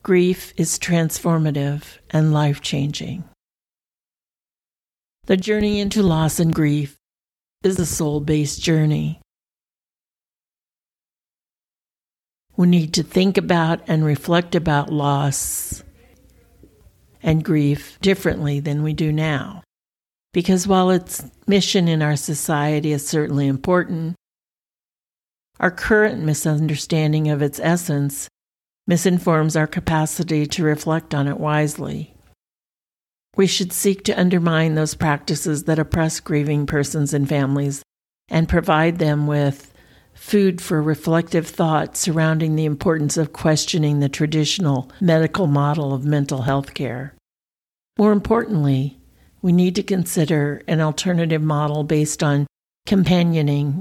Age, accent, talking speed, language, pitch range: 50-69, American, 115 wpm, English, 145-170 Hz